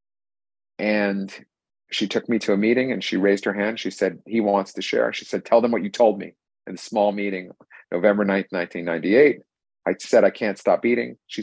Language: English